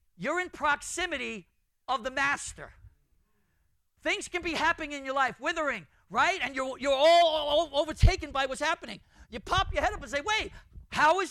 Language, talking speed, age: English, 185 wpm, 50-69